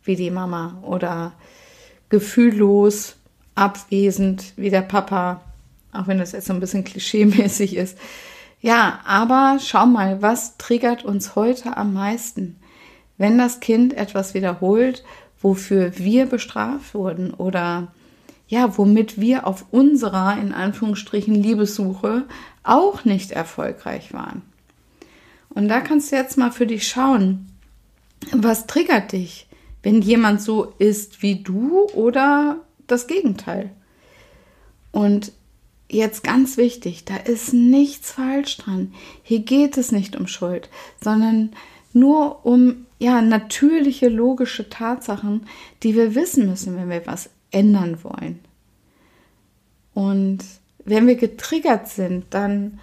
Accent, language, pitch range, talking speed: German, German, 195-250 Hz, 120 wpm